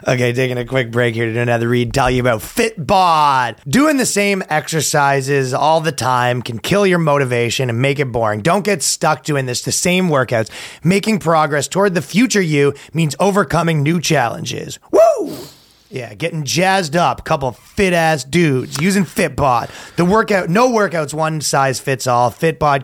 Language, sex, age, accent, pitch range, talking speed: English, male, 30-49, American, 125-165 Hz, 175 wpm